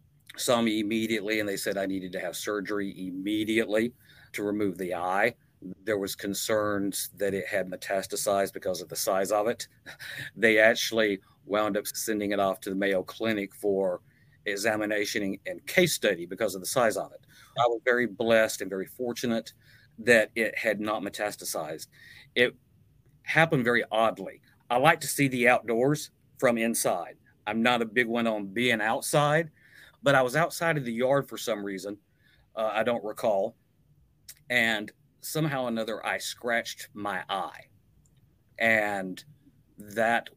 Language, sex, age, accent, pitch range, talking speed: English, male, 50-69, American, 105-125 Hz, 160 wpm